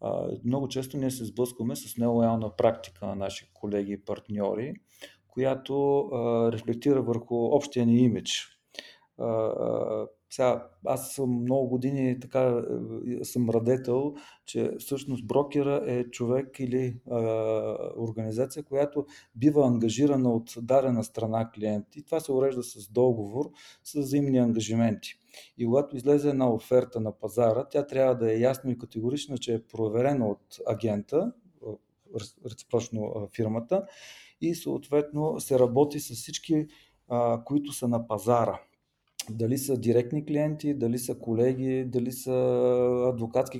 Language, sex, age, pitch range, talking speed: Bulgarian, male, 40-59, 115-135 Hz, 125 wpm